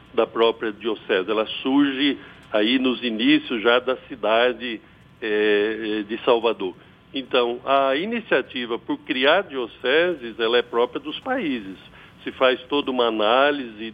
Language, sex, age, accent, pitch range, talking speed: Portuguese, male, 60-79, Brazilian, 120-175 Hz, 130 wpm